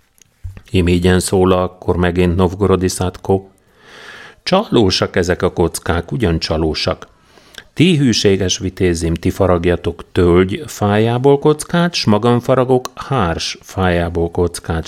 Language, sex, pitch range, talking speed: Hungarian, male, 90-125 Hz, 95 wpm